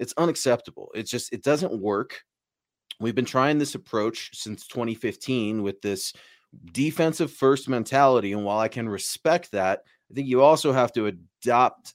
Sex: male